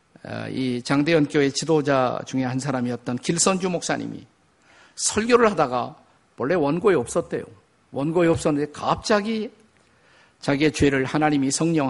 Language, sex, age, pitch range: Korean, male, 50-69, 140-185 Hz